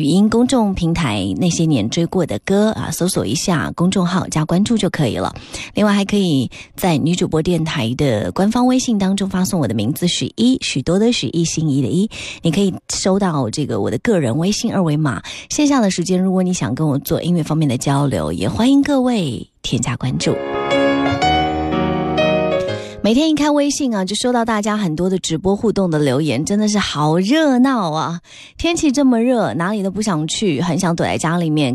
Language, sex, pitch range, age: Chinese, female, 145-205 Hz, 30-49